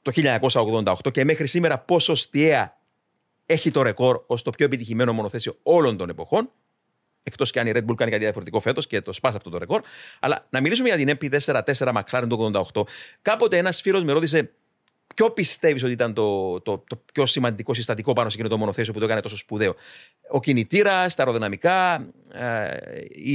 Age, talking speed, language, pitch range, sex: 40-59, 190 wpm, Greek, 125-170 Hz, male